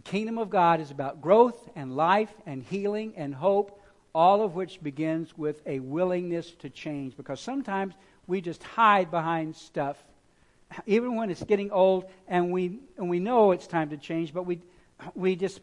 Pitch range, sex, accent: 150-195 Hz, male, American